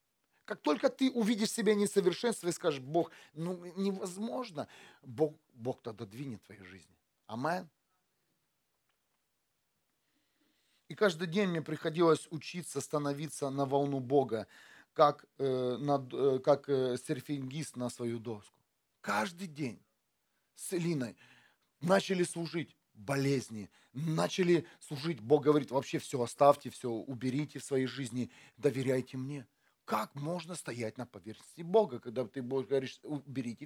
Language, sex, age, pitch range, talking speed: Russian, male, 40-59, 130-165 Hz, 120 wpm